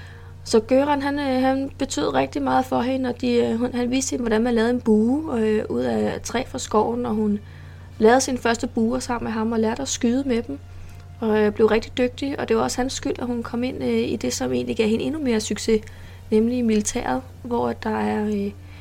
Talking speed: 225 wpm